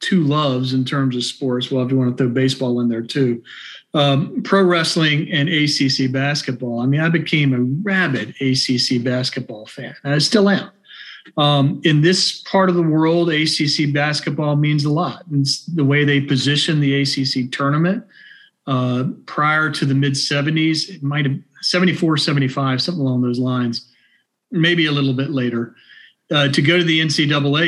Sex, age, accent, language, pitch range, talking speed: male, 40-59, American, English, 135-160 Hz, 175 wpm